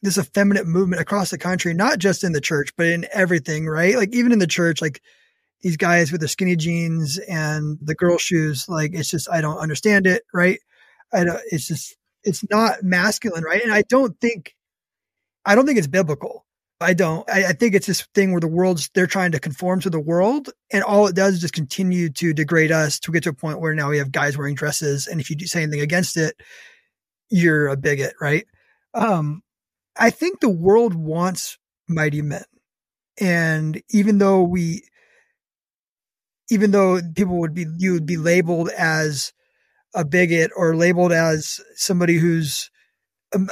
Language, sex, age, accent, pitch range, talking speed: English, male, 20-39, American, 160-200 Hz, 190 wpm